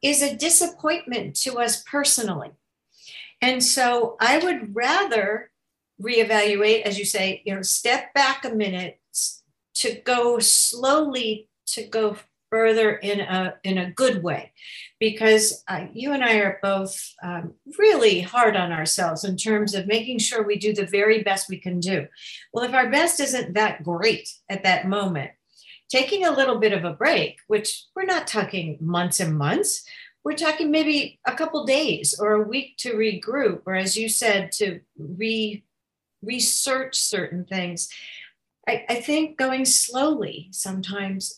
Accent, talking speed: American, 155 wpm